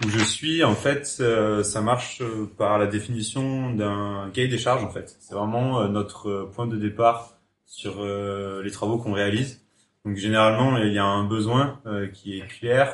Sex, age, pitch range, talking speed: male, 30-49, 100-120 Hz, 190 wpm